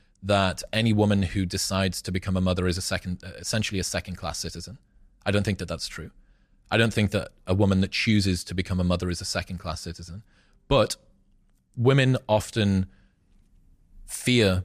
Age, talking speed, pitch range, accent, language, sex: 30-49, 170 wpm, 90-105 Hz, British, English, male